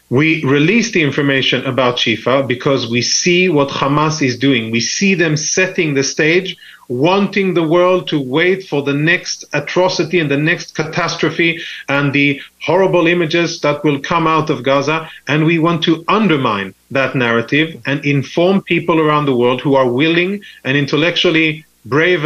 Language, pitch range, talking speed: English, 135-170 Hz, 165 wpm